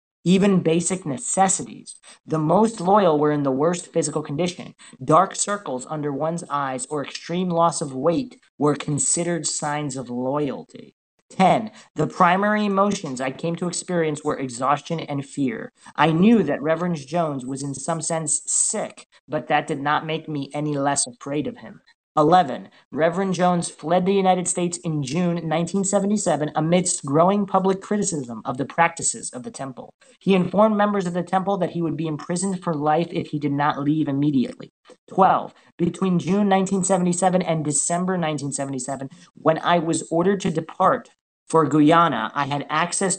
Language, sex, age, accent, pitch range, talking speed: English, male, 40-59, American, 150-180 Hz, 165 wpm